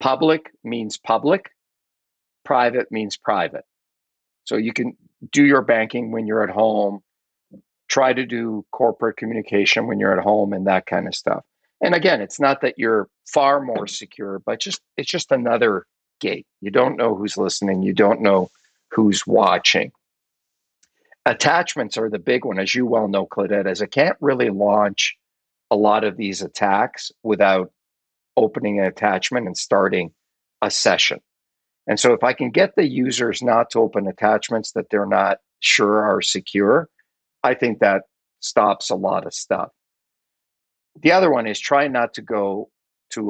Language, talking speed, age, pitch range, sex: English, 165 wpm, 50-69, 100-120 Hz, male